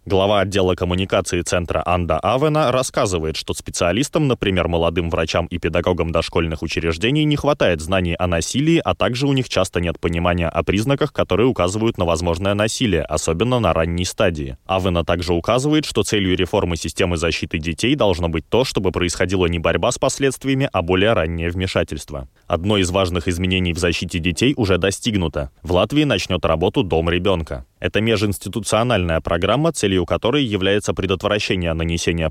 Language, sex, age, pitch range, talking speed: Russian, male, 20-39, 85-105 Hz, 155 wpm